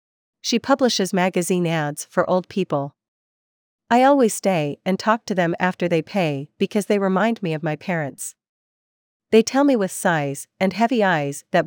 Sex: female